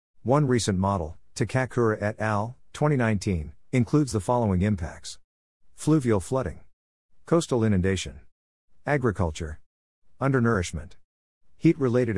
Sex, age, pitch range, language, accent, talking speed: male, 50-69, 90-115 Hz, English, American, 90 wpm